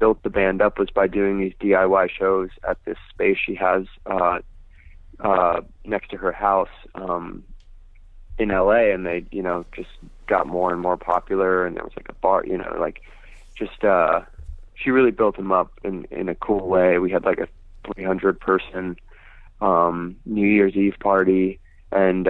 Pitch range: 90-95 Hz